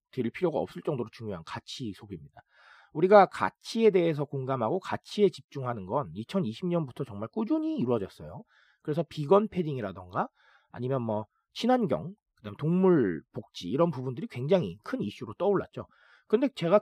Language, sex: Korean, male